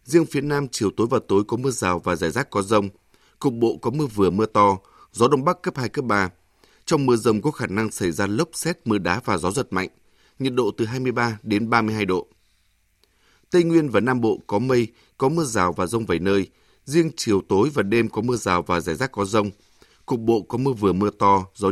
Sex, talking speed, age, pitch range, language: male, 240 wpm, 20-39, 100-130 Hz, Vietnamese